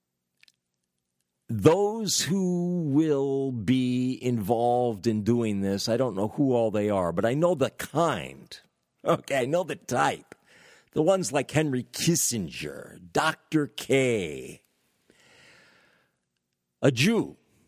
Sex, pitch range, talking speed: male, 95-155 Hz, 115 wpm